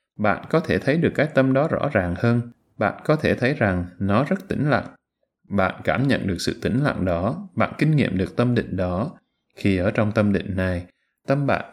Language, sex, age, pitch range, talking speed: Vietnamese, male, 20-39, 95-135 Hz, 220 wpm